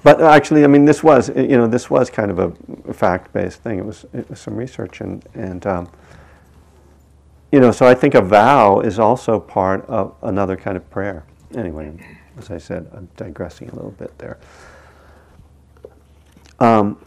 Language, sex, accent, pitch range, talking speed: English, male, American, 75-100 Hz, 175 wpm